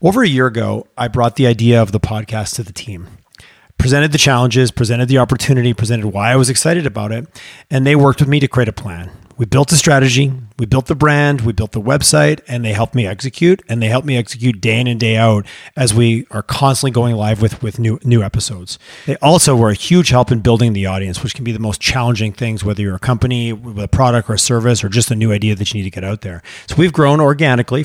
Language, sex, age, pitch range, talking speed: English, male, 30-49, 110-135 Hz, 250 wpm